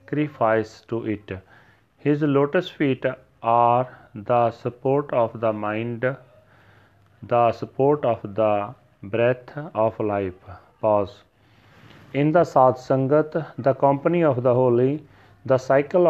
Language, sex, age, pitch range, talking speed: Punjabi, male, 40-59, 115-140 Hz, 110 wpm